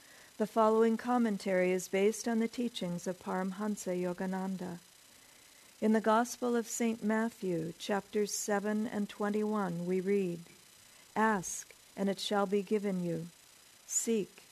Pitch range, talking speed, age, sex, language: 190-220 Hz, 130 wpm, 50-69, female, English